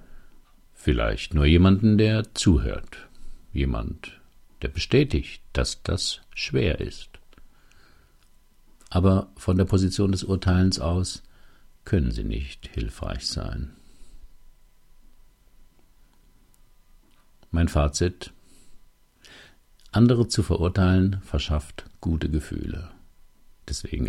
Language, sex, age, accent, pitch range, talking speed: German, male, 60-79, German, 75-95 Hz, 80 wpm